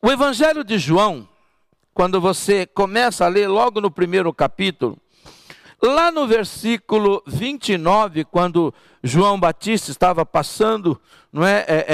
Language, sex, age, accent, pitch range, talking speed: Portuguese, male, 60-79, Brazilian, 180-240 Hz, 110 wpm